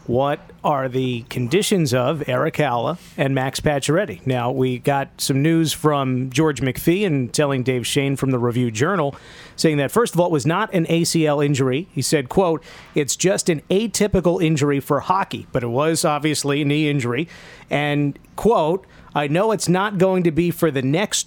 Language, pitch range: English, 140-175 Hz